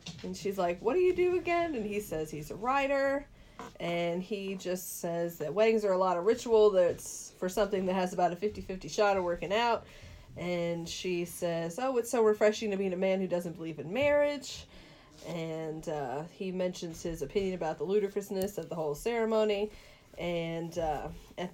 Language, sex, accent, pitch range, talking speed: English, female, American, 170-210 Hz, 190 wpm